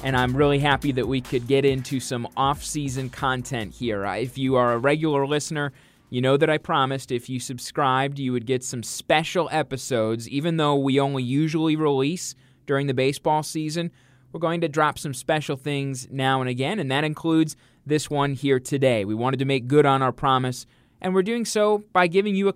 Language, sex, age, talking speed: English, male, 20-39, 200 wpm